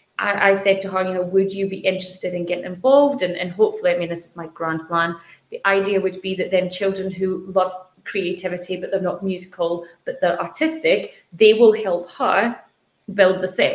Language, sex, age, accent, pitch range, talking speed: English, female, 20-39, British, 185-225 Hz, 205 wpm